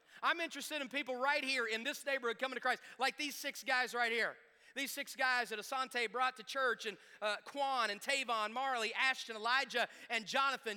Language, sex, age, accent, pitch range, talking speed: English, male, 30-49, American, 185-260 Hz, 200 wpm